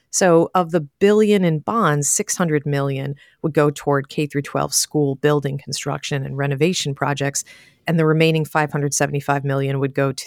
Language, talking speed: English, 160 wpm